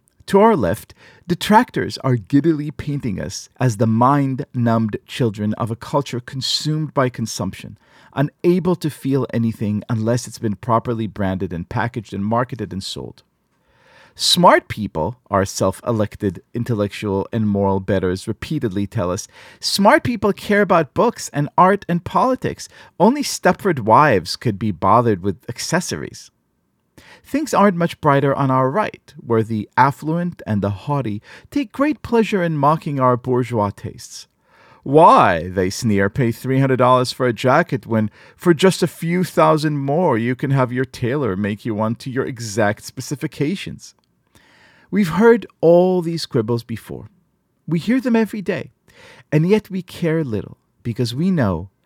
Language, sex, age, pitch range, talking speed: English, male, 40-59, 110-155 Hz, 150 wpm